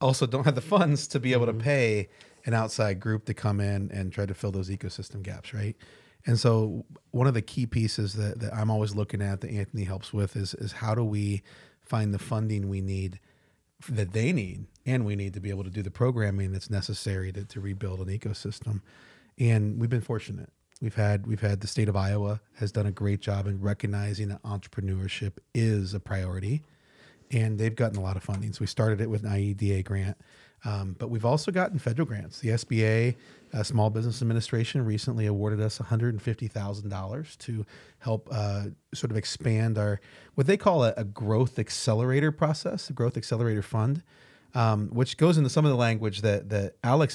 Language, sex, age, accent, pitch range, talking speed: English, male, 30-49, American, 100-120 Hz, 200 wpm